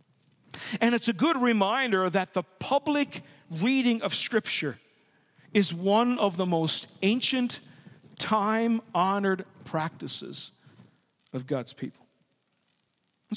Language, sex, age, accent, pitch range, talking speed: English, male, 50-69, American, 165-225 Hz, 105 wpm